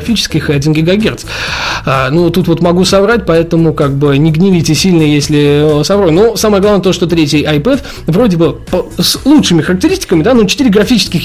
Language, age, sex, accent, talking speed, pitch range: Russian, 20-39, male, native, 190 wpm, 150-195 Hz